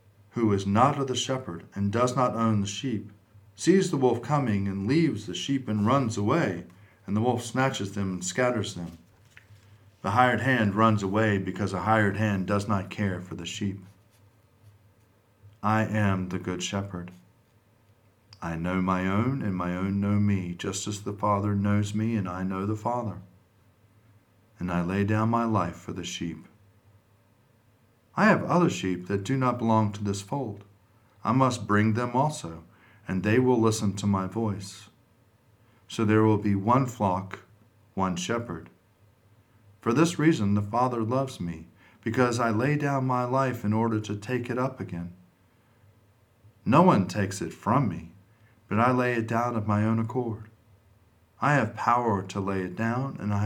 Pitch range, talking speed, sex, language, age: 100-115 Hz, 175 wpm, male, English, 40-59